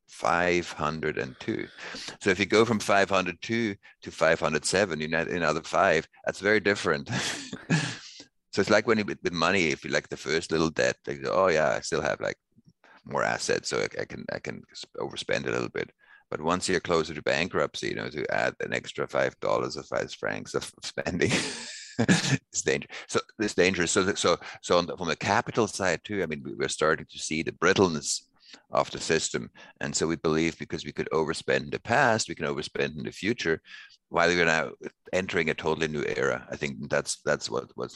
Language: English